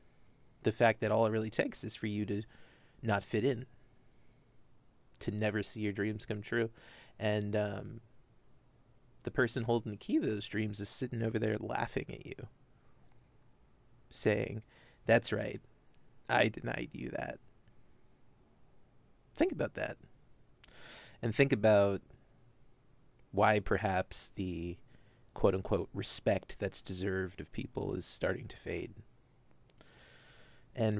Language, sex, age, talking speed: English, male, 30-49, 125 wpm